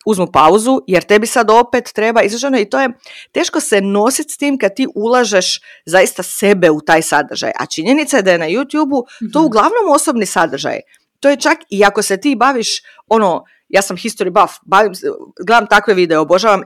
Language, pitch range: Croatian, 190-270 Hz